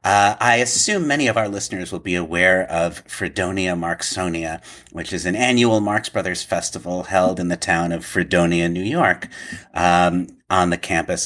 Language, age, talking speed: English, 40-59, 170 wpm